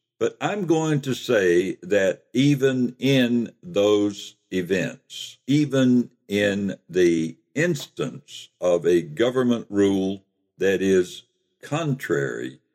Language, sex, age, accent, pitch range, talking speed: English, male, 60-79, American, 95-140 Hz, 100 wpm